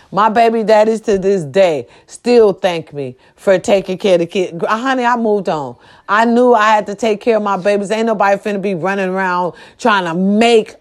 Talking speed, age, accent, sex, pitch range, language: 210 wpm, 40-59, American, female, 195-320 Hz, English